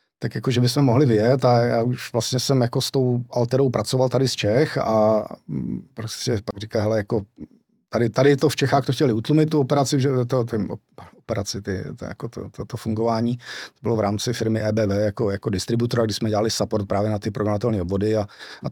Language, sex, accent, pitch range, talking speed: Czech, male, native, 105-130 Hz, 210 wpm